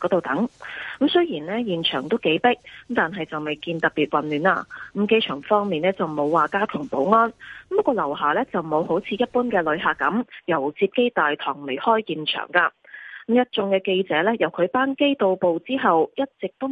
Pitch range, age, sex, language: 170-250 Hz, 20-39, female, Chinese